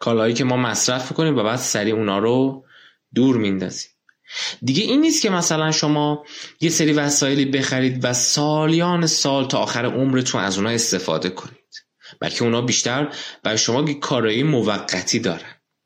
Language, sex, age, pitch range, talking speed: Persian, male, 20-39, 110-150 Hz, 155 wpm